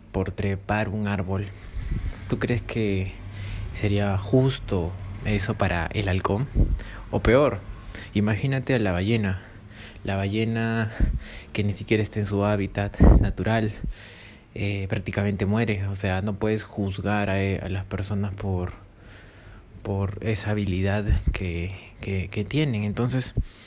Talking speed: 125 wpm